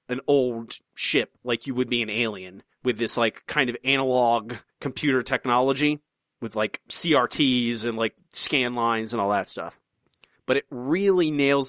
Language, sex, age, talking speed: English, male, 30-49, 165 wpm